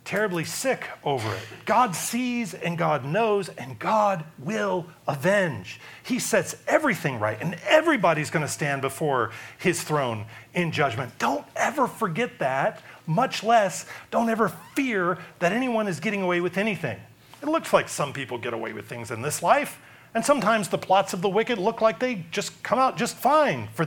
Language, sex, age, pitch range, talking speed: English, male, 40-59, 145-220 Hz, 180 wpm